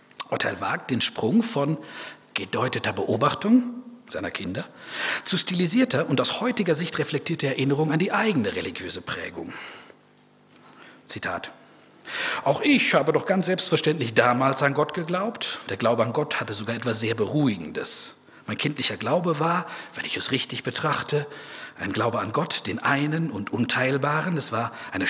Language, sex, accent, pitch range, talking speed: German, male, German, 120-175 Hz, 150 wpm